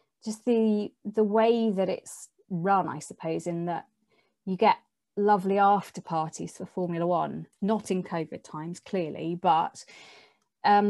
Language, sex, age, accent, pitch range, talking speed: English, female, 20-39, British, 175-210 Hz, 145 wpm